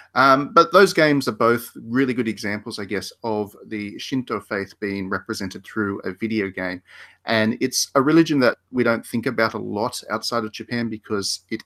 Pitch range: 100-115 Hz